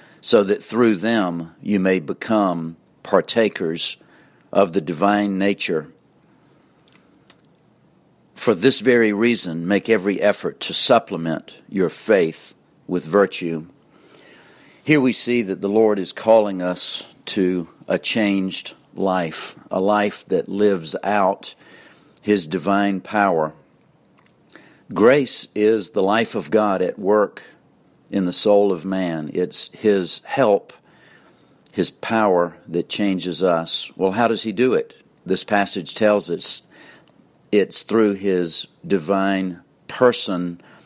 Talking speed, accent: 120 wpm, American